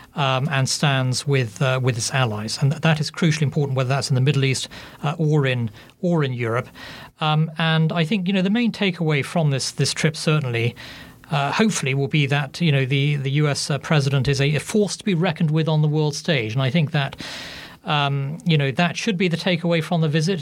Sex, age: male, 40-59